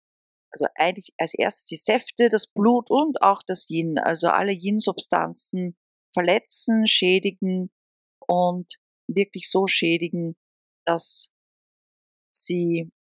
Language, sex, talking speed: German, female, 105 wpm